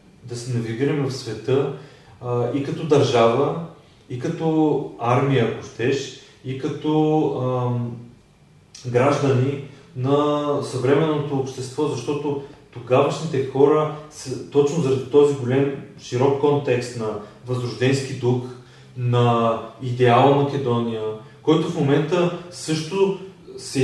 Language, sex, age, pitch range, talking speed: Bulgarian, male, 30-49, 125-150 Hz, 105 wpm